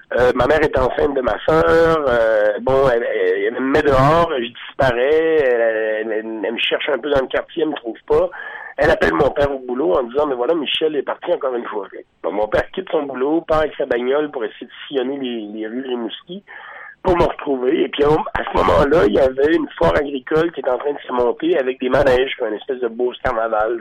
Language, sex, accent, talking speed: French, male, French, 245 wpm